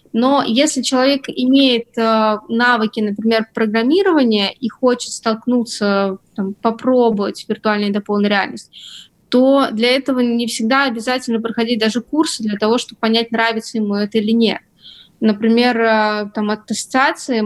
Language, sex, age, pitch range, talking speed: Russian, female, 20-39, 215-255 Hz, 125 wpm